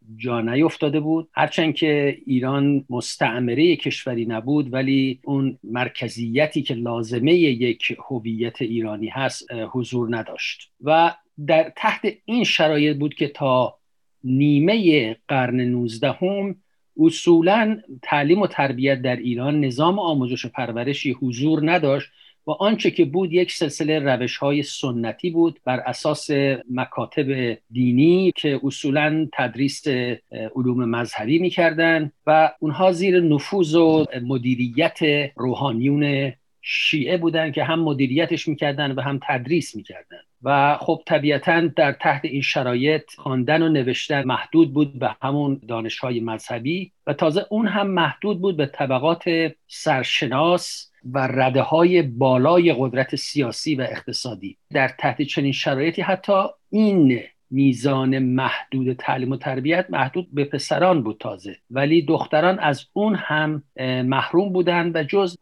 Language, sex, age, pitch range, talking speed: Persian, male, 50-69, 130-165 Hz, 125 wpm